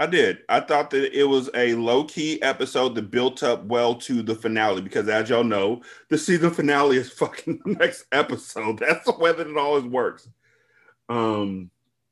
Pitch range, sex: 115-140 Hz, male